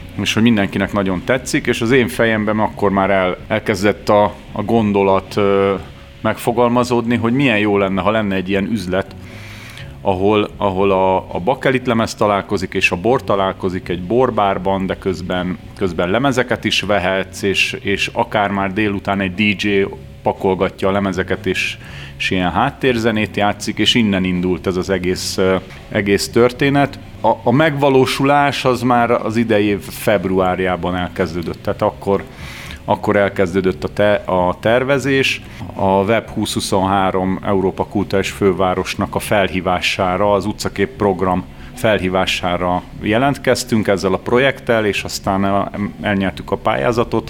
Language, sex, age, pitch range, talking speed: Hungarian, male, 30-49, 95-110 Hz, 135 wpm